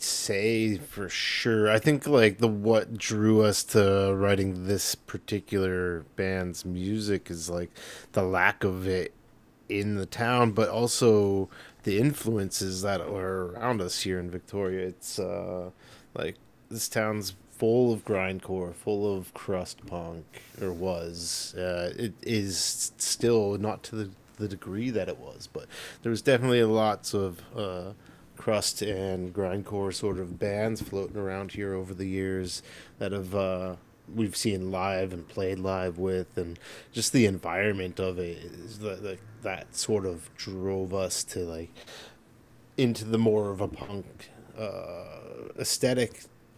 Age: 30-49